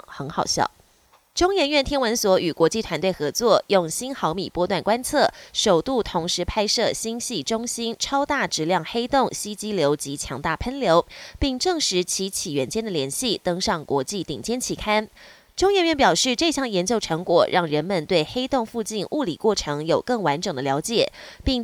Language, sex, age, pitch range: Chinese, female, 20-39, 175-250 Hz